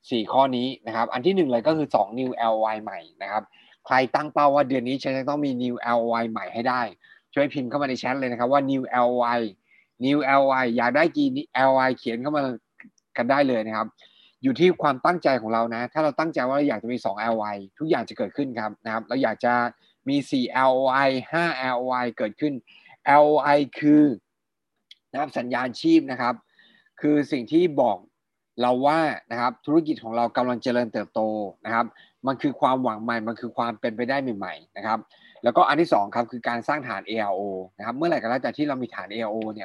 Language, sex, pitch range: Thai, male, 115-145 Hz